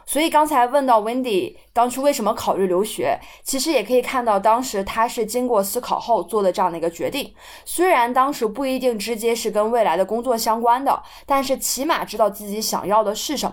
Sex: female